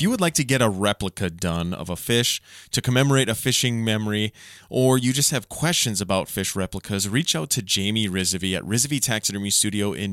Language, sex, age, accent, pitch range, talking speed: English, male, 20-39, American, 100-120 Hz, 210 wpm